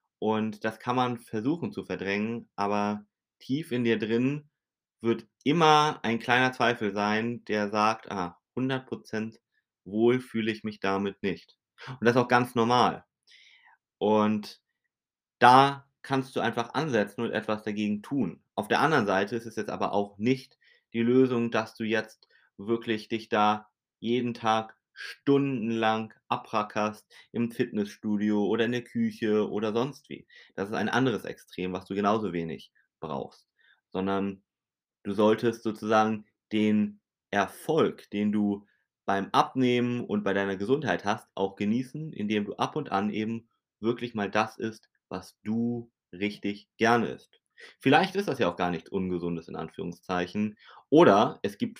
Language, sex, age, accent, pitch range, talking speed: German, male, 30-49, German, 105-120 Hz, 150 wpm